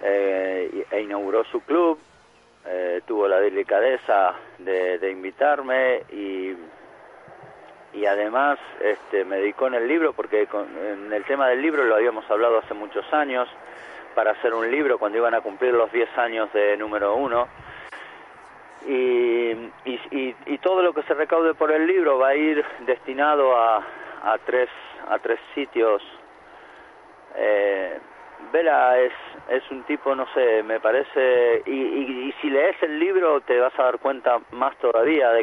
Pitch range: 105-170 Hz